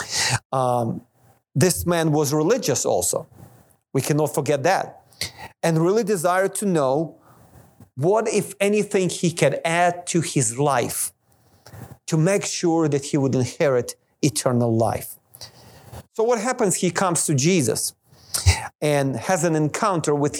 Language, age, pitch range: English, 40-59, 130-175 Hz